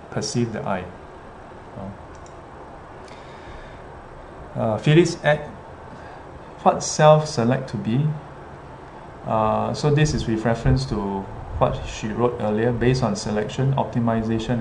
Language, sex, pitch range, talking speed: English, male, 110-135 Hz, 105 wpm